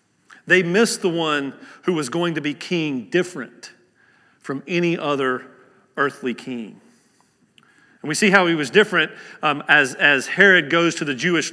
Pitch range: 150-185 Hz